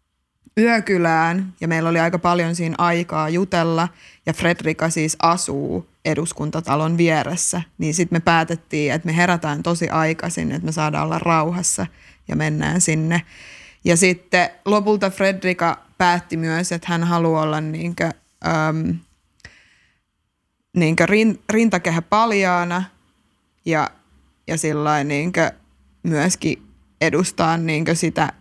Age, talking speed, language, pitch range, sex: 20-39, 105 wpm, Finnish, 160-180 Hz, female